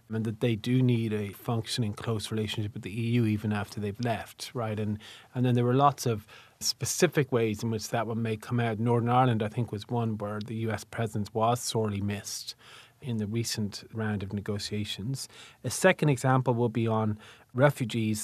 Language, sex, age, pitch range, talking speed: English, male, 30-49, 105-120 Hz, 195 wpm